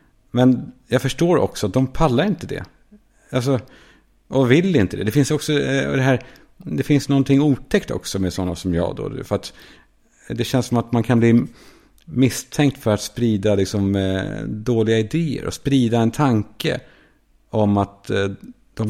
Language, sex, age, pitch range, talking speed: Swedish, male, 50-69, 95-135 Hz, 165 wpm